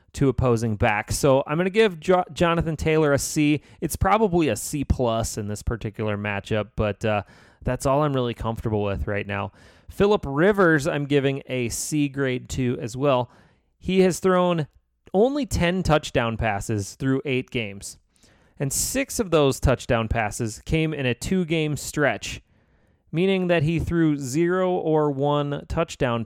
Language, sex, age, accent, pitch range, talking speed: English, male, 30-49, American, 115-160 Hz, 155 wpm